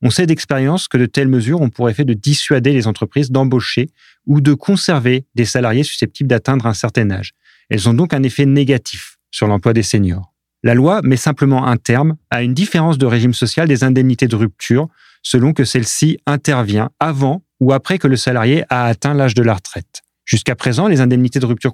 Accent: French